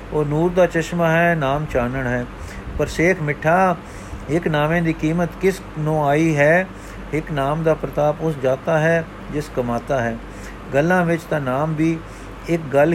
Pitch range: 140-165 Hz